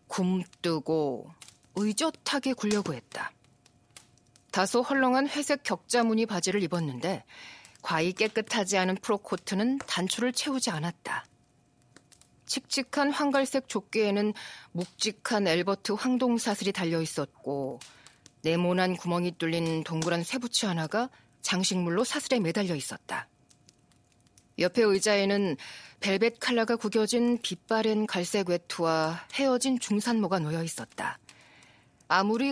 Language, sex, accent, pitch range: Korean, female, native, 165-235 Hz